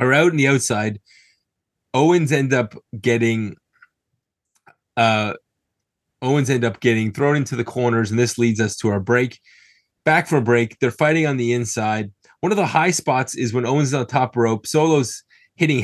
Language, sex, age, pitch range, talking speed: English, male, 30-49, 120-155 Hz, 180 wpm